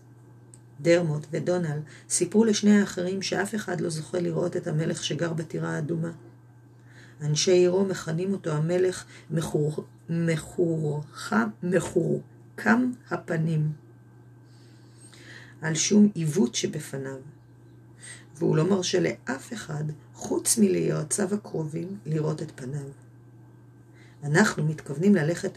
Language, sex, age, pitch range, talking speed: Hebrew, female, 40-59, 120-180 Hz, 100 wpm